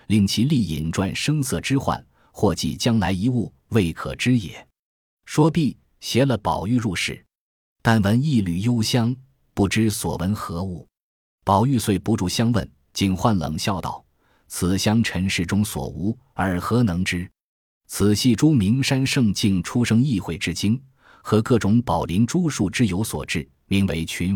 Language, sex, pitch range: Chinese, male, 90-120 Hz